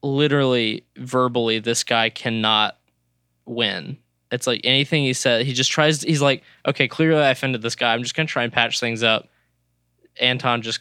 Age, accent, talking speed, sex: 10-29, American, 185 wpm, male